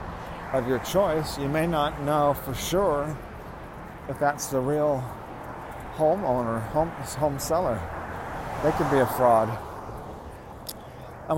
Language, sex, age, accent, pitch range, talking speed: English, male, 40-59, American, 110-140 Hz, 120 wpm